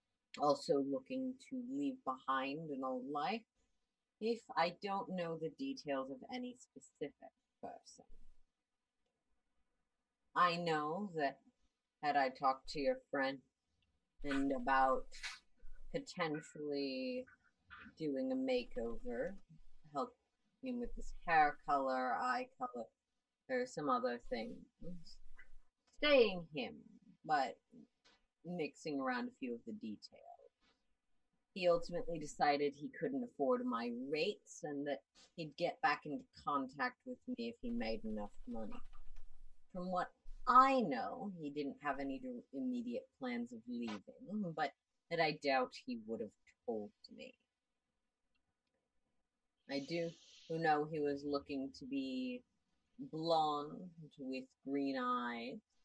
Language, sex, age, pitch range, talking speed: English, female, 30-49, 155-250 Hz, 120 wpm